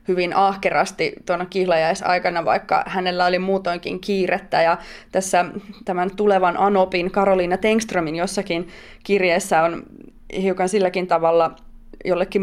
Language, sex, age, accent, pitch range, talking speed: Finnish, female, 20-39, native, 180-205 Hz, 110 wpm